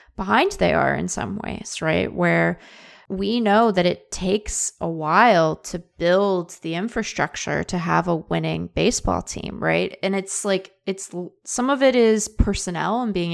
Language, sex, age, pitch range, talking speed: English, female, 20-39, 155-195 Hz, 165 wpm